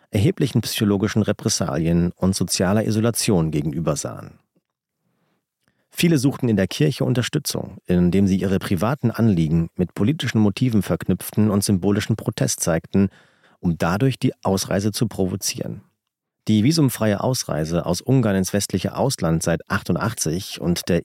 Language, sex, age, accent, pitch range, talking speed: German, male, 40-59, German, 95-120 Hz, 130 wpm